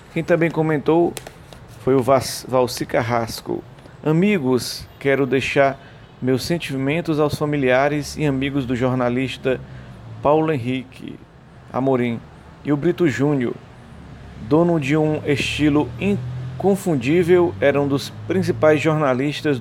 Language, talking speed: English, 110 wpm